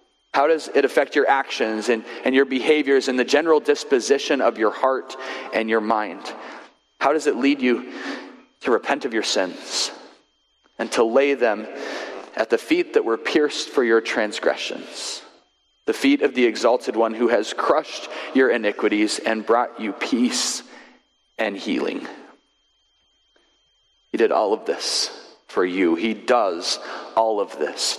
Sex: male